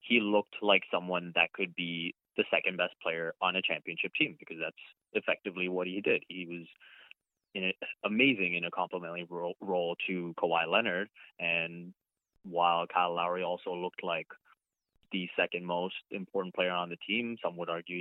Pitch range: 85-100 Hz